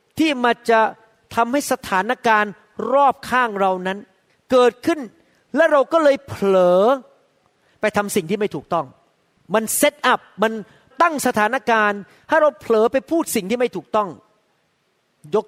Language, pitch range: Thai, 210-275 Hz